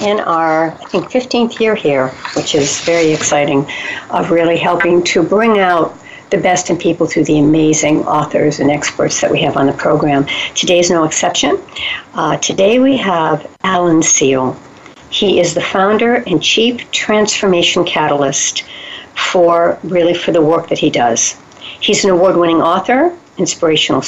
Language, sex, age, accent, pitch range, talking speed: English, female, 60-79, American, 160-200 Hz, 160 wpm